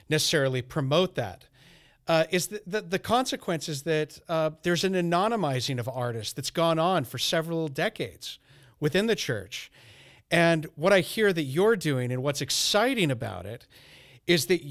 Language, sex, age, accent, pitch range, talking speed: English, male, 40-59, American, 140-180 Hz, 165 wpm